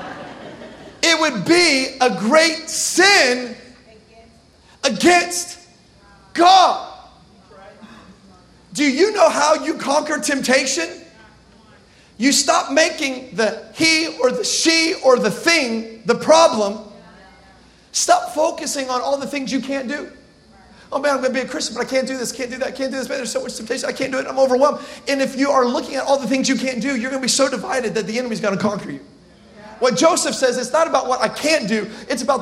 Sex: male